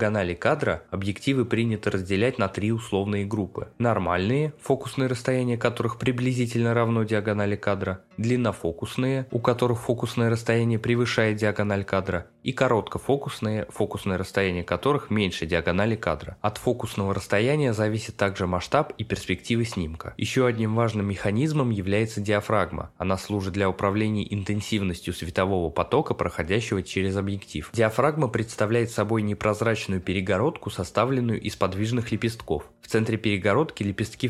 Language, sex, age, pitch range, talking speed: Russian, male, 20-39, 95-120 Hz, 120 wpm